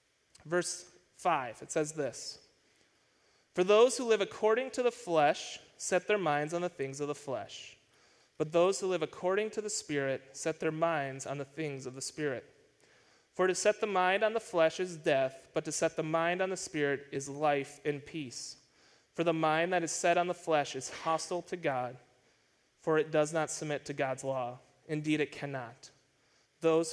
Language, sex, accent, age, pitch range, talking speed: English, male, American, 30-49, 150-215 Hz, 190 wpm